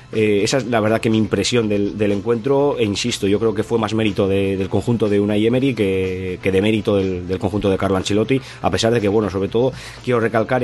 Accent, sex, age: Spanish, male, 20-39